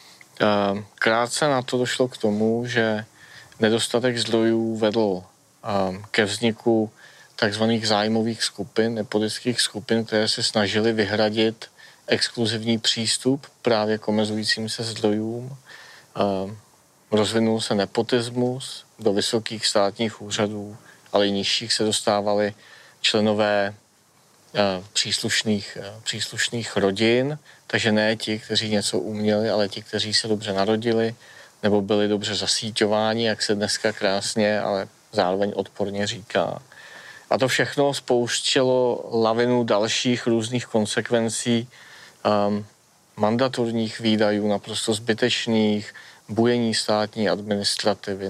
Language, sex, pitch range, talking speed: Czech, male, 105-115 Hz, 105 wpm